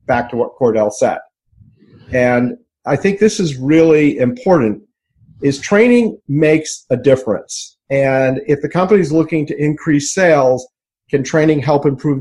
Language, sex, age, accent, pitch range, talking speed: English, male, 50-69, American, 120-150 Hz, 145 wpm